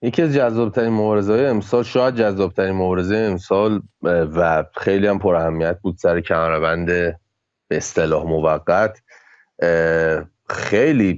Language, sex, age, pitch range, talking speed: Persian, male, 30-49, 90-115 Hz, 115 wpm